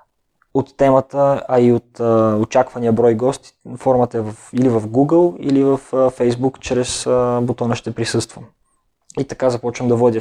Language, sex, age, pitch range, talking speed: Bulgarian, male, 20-39, 115-130 Hz, 170 wpm